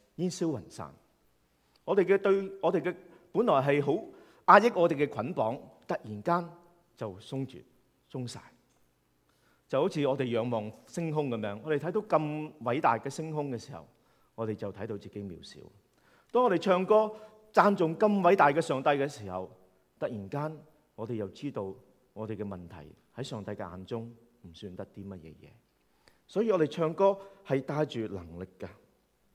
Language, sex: English, male